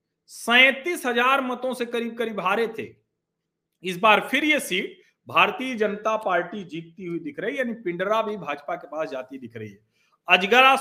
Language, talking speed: Hindi, 180 wpm